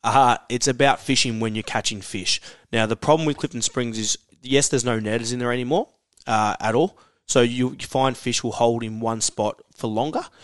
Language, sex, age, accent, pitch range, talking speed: English, male, 20-39, Australian, 110-135 Hz, 205 wpm